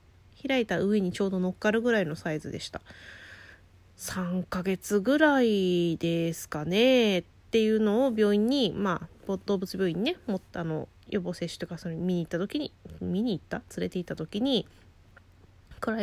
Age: 20-39